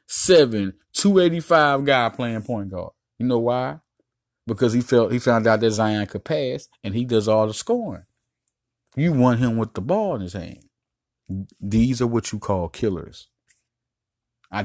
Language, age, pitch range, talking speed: English, 30-49, 105-140 Hz, 170 wpm